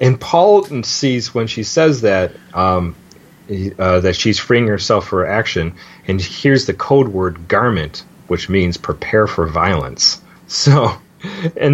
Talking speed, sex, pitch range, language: 155 wpm, male, 90-130 Hz, English